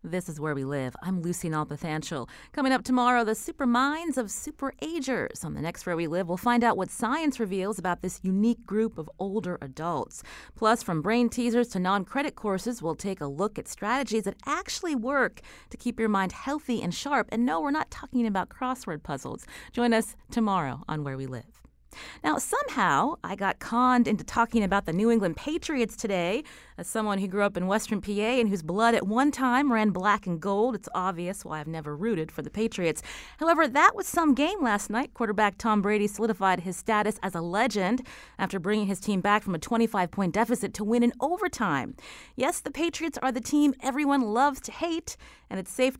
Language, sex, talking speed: English, female, 205 wpm